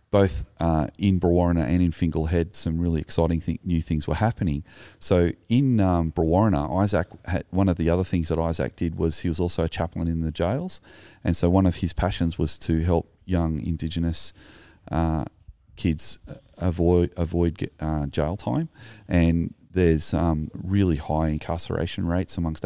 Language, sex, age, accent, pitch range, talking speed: English, male, 30-49, Australian, 80-90 Hz, 170 wpm